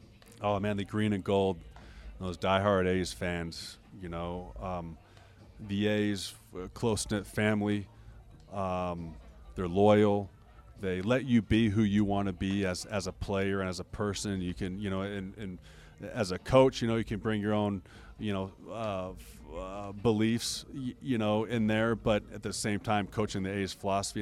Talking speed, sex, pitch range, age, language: 175 wpm, male, 90-110 Hz, 30-49, English